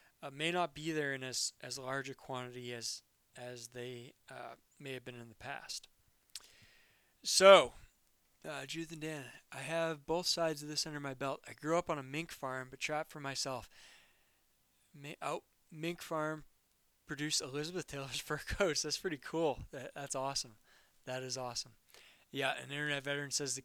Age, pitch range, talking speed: 20-39, 130-155 Hz, 180 wpm